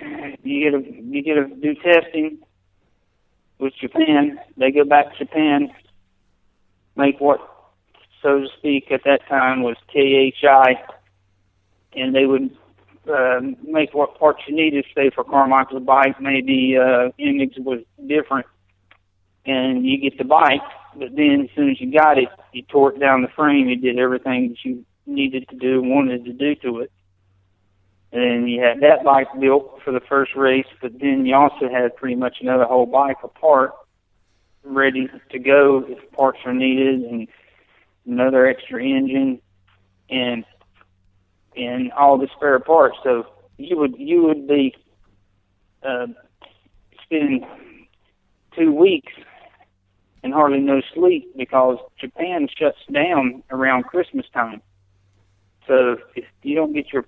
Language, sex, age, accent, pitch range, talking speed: English, male, 50-69, American, 120-145 Hz, 145 wpm